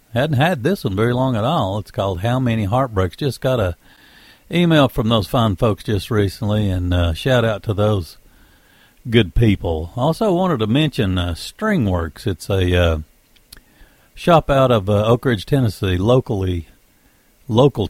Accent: American